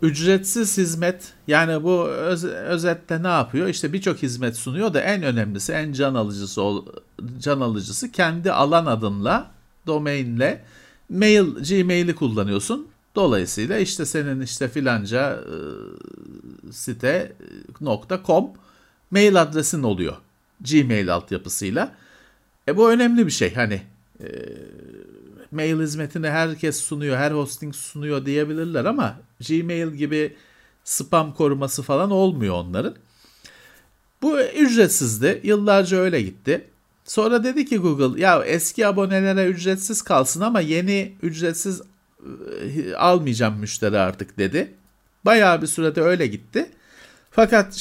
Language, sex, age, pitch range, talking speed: Turkish, male, 50-69, 130-190 Hz, 110 wpm